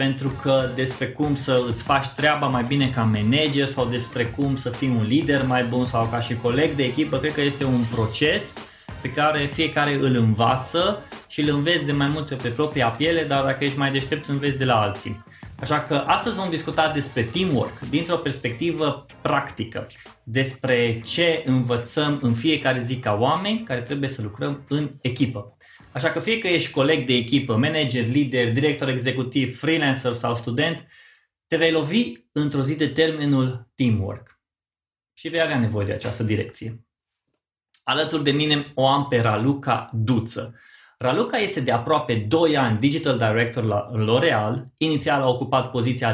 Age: 20-39